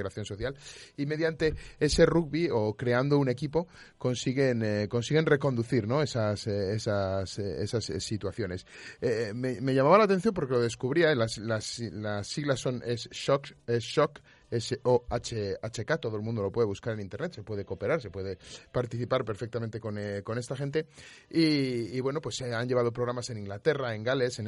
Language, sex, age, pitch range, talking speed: Spanish, male, 30-49, 105-130 Hz, 160 wpm